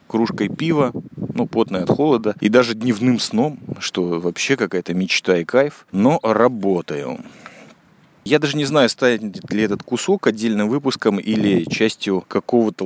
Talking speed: 150 wpm